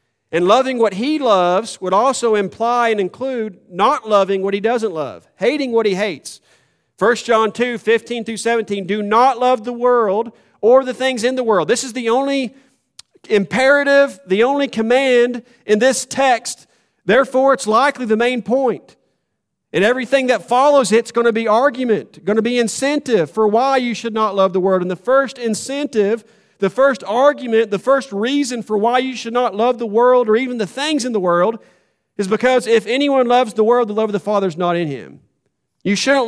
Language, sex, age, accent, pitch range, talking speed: English, male, 40-59, American, 190-245 Hz, 195 wpm